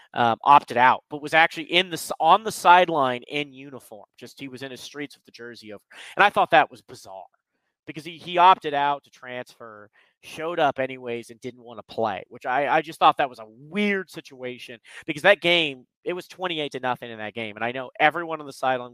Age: 30-49